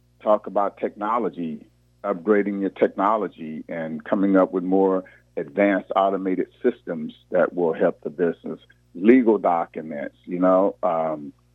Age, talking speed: 50-69, 125 wpm